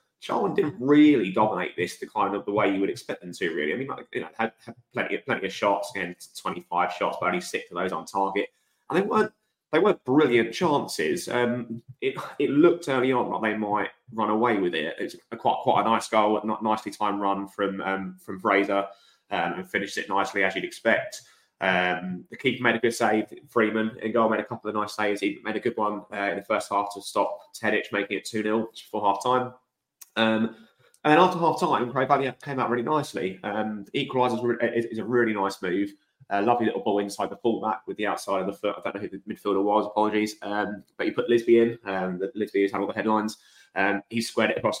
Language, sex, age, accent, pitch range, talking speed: English, male, 20-39, British, 100-120 Hz, 240 wpm